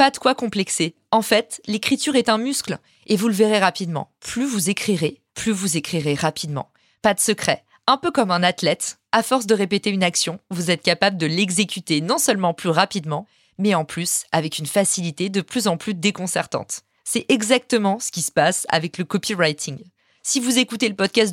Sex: female